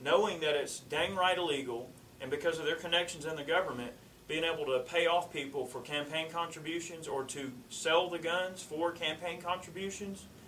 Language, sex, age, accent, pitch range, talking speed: English, male, 30-49, American, 135-195 Hz, 180 wpm